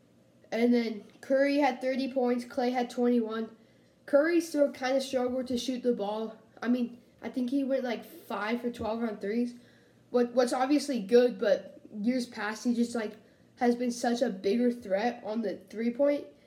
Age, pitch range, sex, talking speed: 10-29, 210-250 Hz, female, 175 wpm